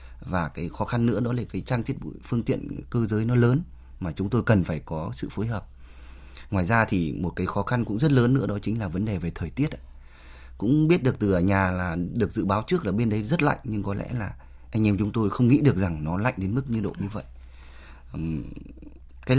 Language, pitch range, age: Vietnamese, 80-115 Hz, 20-39